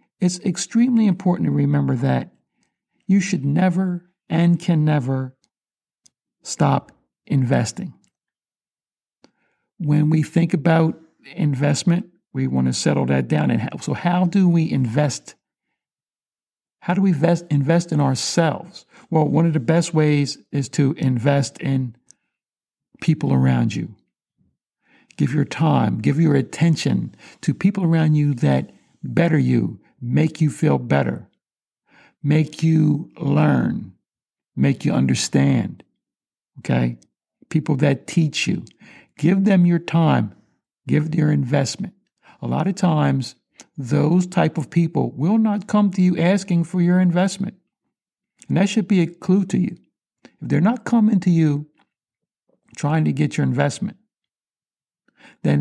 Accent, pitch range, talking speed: American, 145-180 Hz, 130 wpm